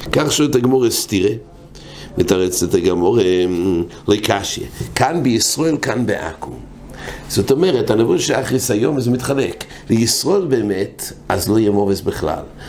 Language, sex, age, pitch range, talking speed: English, male, 60-79, 100-145 Hz, 130 wpm